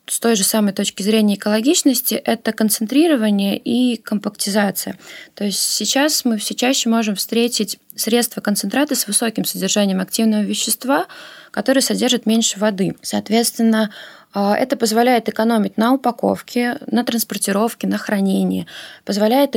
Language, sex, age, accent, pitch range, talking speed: Russian, female, 20-39, native, 205-240 Hz, 125 wpm